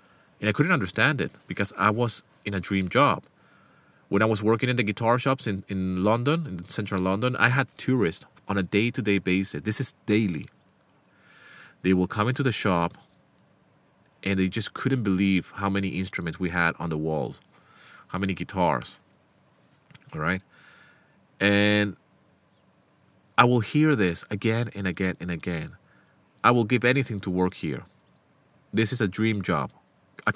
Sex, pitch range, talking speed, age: male, 95-125 Hz, 165 wpm, 30-49